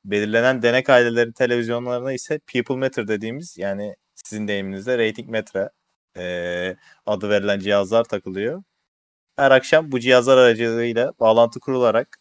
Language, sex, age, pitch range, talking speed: Turkish, male, 30-49, 95-120 Hz, 125 wpm